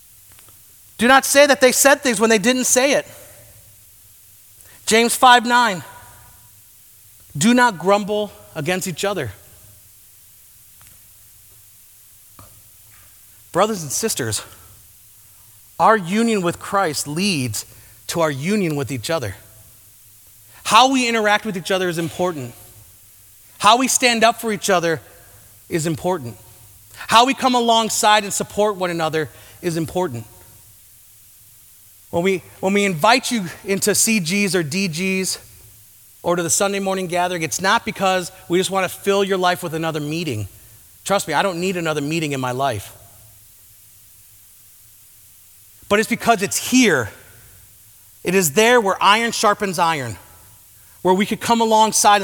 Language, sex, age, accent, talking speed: English, male, 30-49, American, 135 wpm